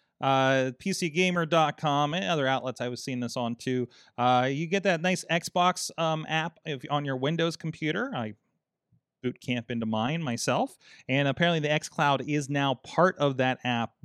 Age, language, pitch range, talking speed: 30-49, English, 125-155 Hz, 165 wpm